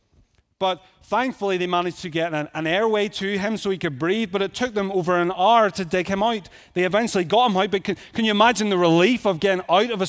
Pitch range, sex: 135-185 Hz, male